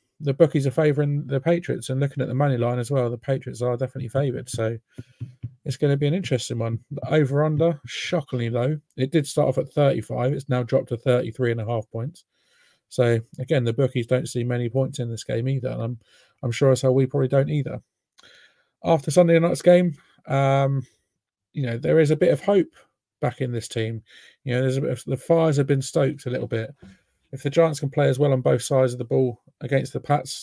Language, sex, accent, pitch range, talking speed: English, male, British, 125-145 Hz, 220 wpm